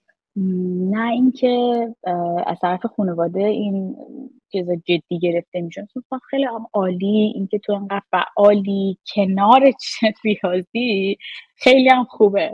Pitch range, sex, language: 185-260 Hz, female, Persian